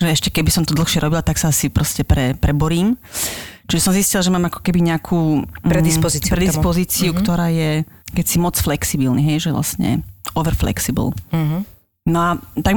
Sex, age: female, 30-49